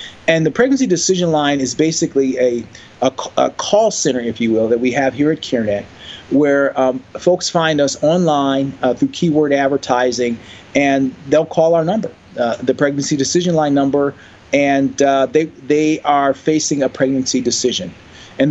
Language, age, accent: English, 40-59, American